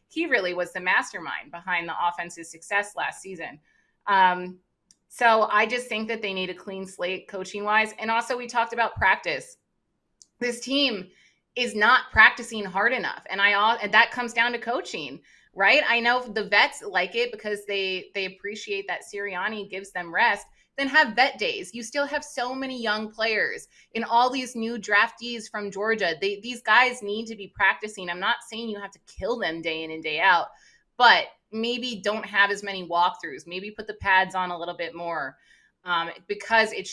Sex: female